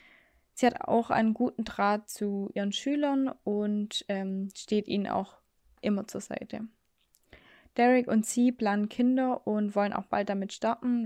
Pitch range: 200-230 Hz